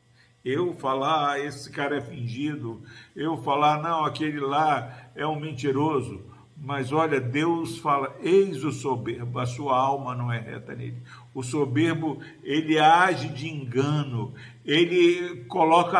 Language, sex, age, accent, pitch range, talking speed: Portuguese, male, 60-79, Brazilian, 130-175 Hz, 140 wpm